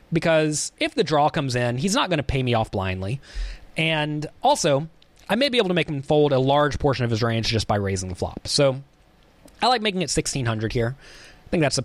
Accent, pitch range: American, 125-175 Hz